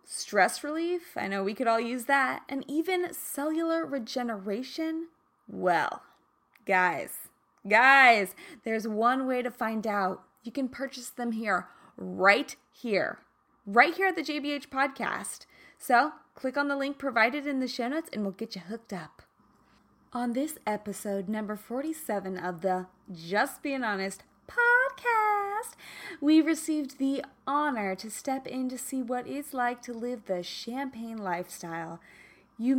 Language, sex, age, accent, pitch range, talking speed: English, female, 20-39, American, 205-290 Hz, 145 wpm